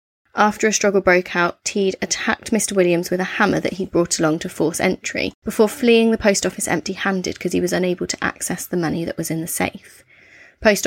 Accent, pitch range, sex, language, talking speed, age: British, 175-205 Hz, female, English, 215 wpm, 20-39